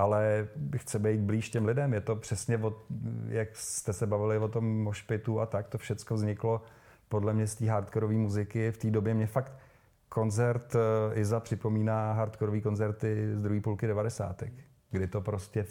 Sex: male